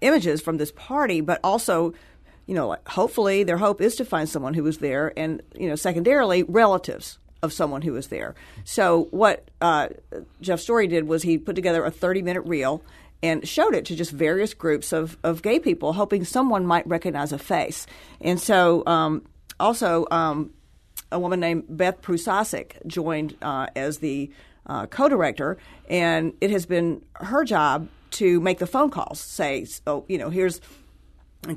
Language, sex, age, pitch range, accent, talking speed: English, female, 50-69, 160-195 Hz, American, 175 wpm